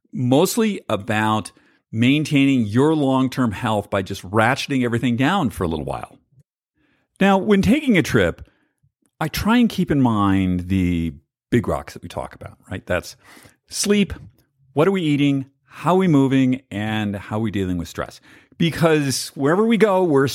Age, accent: 50-69, American